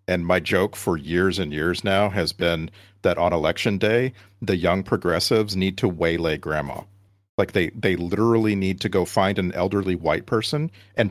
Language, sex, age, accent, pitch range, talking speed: English, male, 40-59, American, 90-100 Hz, 185 wpm